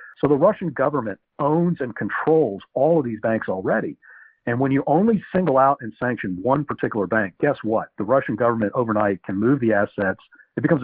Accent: American